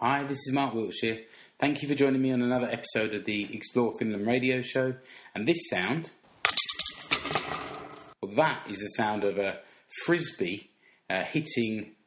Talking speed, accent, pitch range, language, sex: 155 wpm, British, 100-130 Hz, English, male